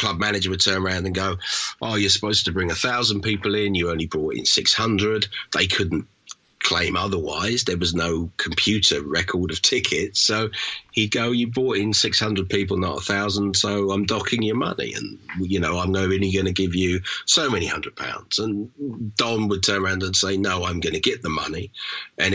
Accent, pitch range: British, 95-115 Hz